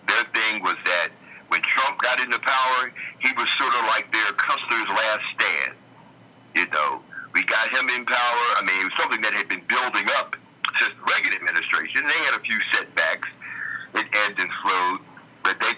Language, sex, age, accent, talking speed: English, male, 60-79, American, 185 wpm